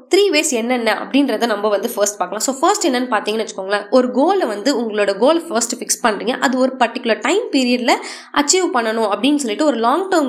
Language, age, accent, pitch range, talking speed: Tamil, 20-39, native, 210-280 Hz, 190 wpm